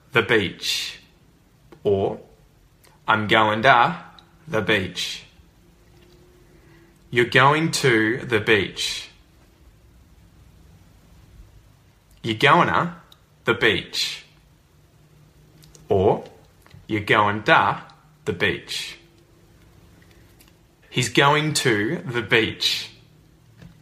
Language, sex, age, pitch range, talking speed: English, male, 20-39, 105-145 Hz, 75 wpm